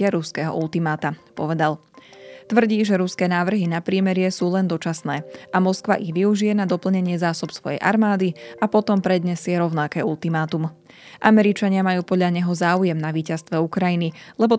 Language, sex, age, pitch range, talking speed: Slovak, female, 20-39, 165-190 Hz, 145 wpm